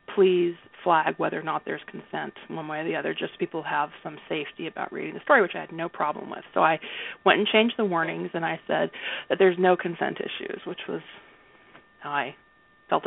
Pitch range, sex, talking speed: 170-220 Hz, female, 215 wpm